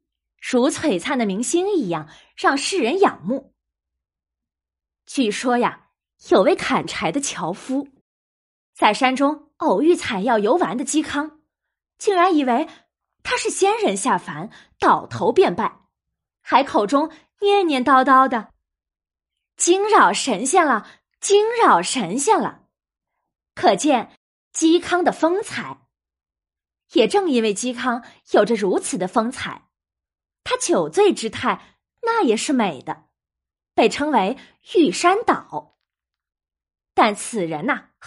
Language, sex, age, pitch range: Chinese, female, 20-39, 220-355 Hz